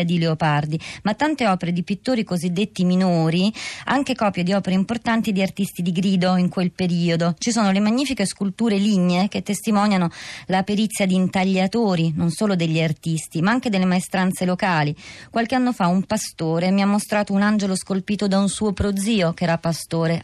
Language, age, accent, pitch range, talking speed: Italian, 30-49, native, 160-195 Hz, 180 wpm